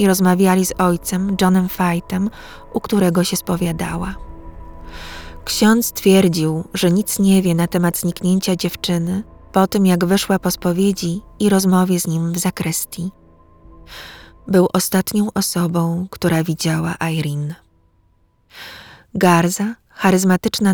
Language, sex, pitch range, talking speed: Polish, female, 170-195 Hz, 115 wpm